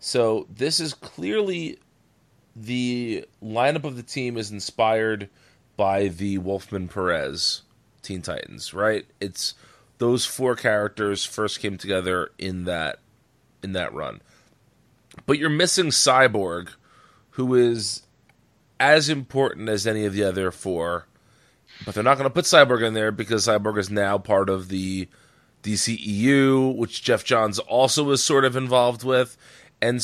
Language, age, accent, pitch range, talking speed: English, 30-49, American, 105-130 Hz, 140 wpm